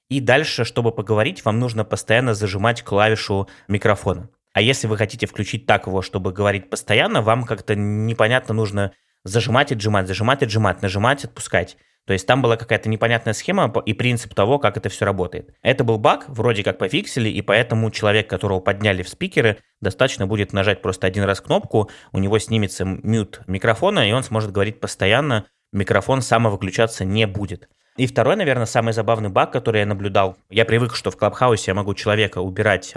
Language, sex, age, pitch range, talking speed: Russian, male, 20-39, 100-115 Hz, 175 wpm